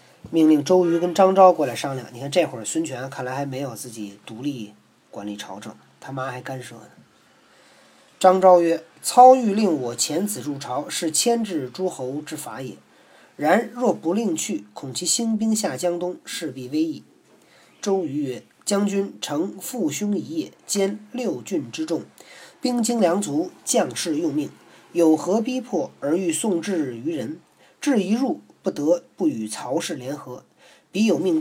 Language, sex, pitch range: Chinese, male, 135-220 Hz